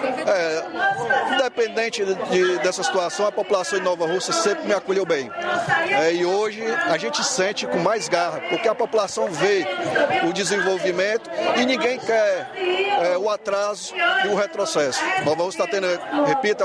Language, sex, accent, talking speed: Portuguese, male, Brazilian, 160 wpm